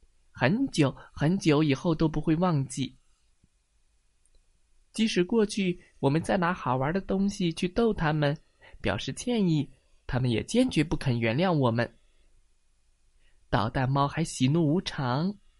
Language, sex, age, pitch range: Chinese, male, 20-39, 125-185 Hz